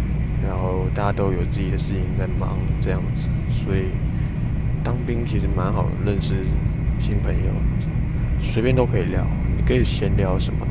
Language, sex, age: Chinese, male, 20-39